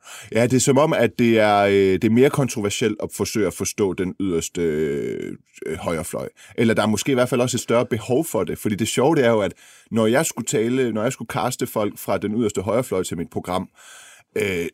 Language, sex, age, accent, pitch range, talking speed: Danish, male, 30-49, native, 105-130 Hz, 240 wpm